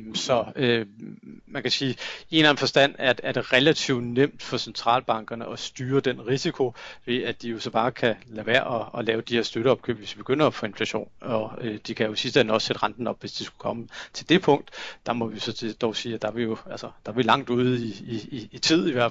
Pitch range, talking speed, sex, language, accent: 115-130 Hz, 260 wpm, male, Danish, native